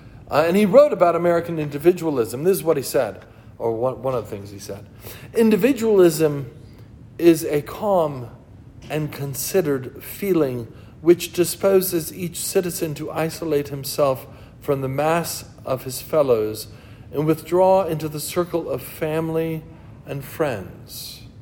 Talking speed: 135 wpm